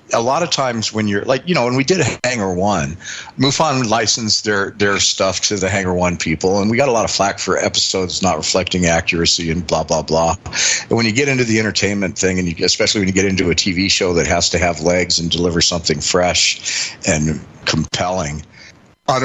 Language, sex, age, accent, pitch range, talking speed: English, male, 40-59, American, 85-105 Hz, 220 wpm